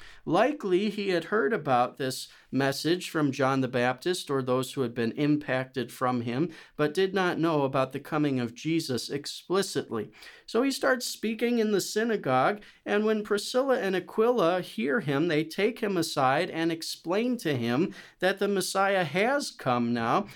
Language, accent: English, American